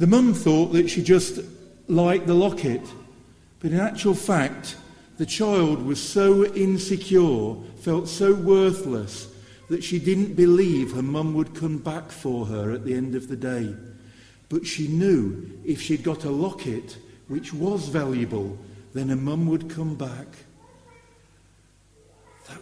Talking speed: 150 wpm